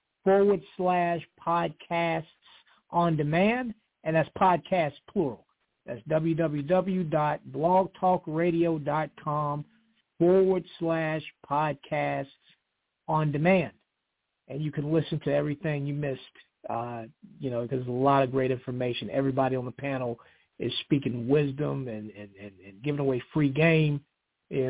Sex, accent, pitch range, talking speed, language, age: male, American, 135-170 Hz, 120 wpm, English, 50-69